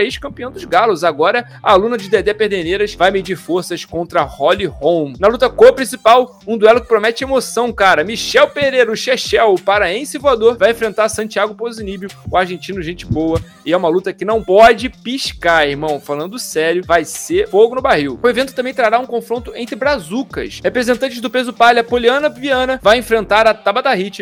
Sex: male